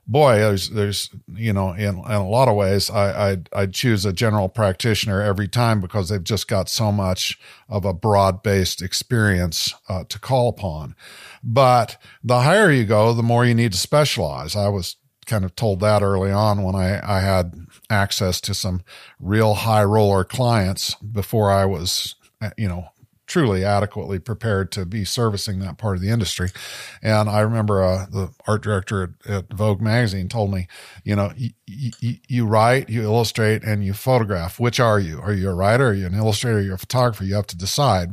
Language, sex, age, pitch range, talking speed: English, male, 50-69, 95-115 Hz, 195 wpm